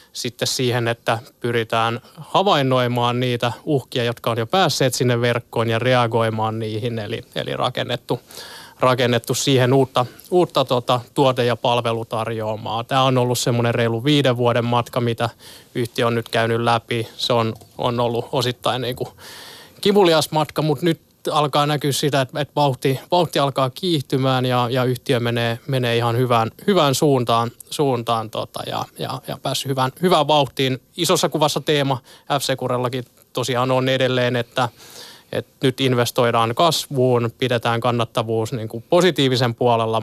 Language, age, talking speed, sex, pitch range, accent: Finnish, 20-39, 140 wpm, male, 120-140 Hz, native